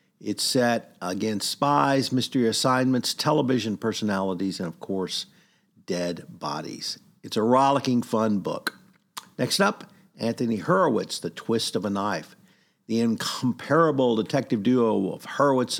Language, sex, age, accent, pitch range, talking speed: English, male, 50-69, American, 100-135 Hz, 125 wpm